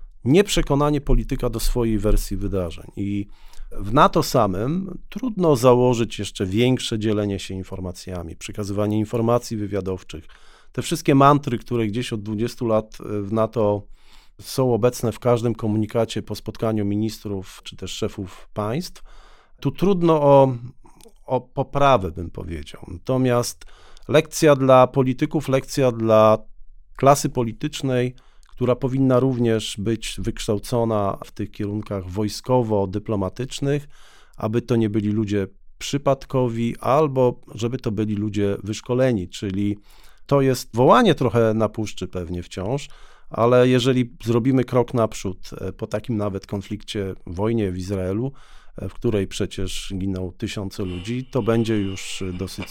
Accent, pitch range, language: native, 100-130 Hz, Polish